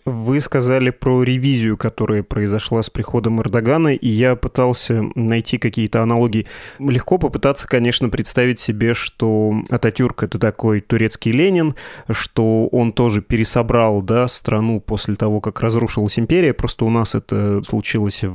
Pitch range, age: 105-125 Hz, 20-39